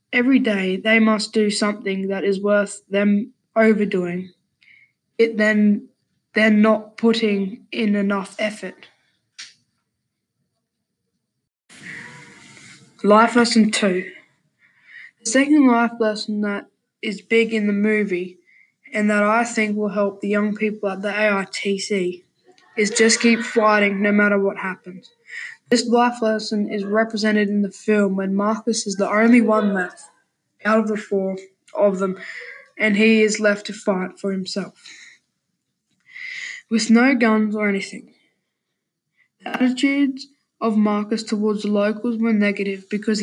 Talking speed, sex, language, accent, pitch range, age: 135 wpm, female, English, Australian, 205-225 Hz, 10-29